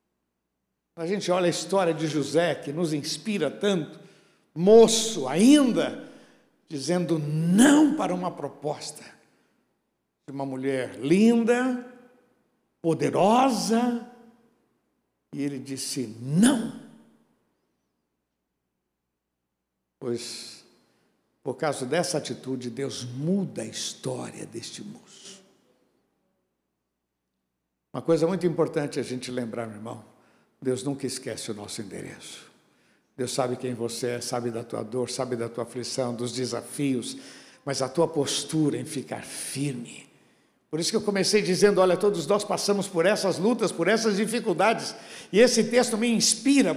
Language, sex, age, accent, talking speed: Portuguese, male, 60-79, Brazilian, 125 wpm